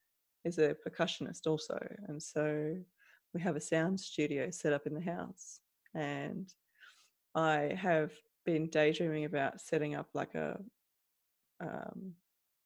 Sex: female